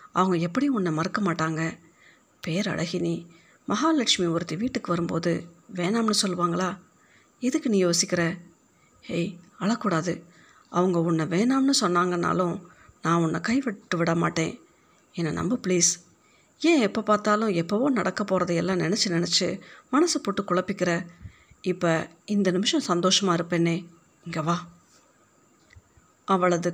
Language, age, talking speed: Tamil, 50-69, 105 wpm